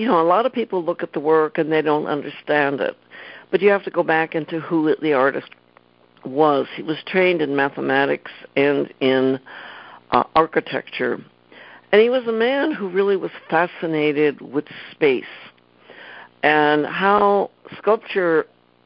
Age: 60-79